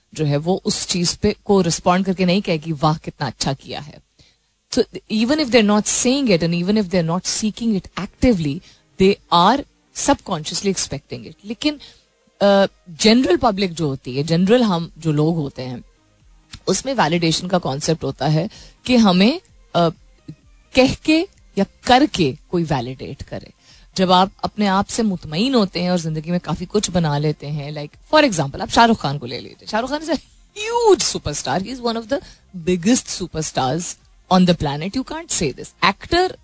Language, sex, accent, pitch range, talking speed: Hindi, female, native, 160-225 Hz, 165 wpm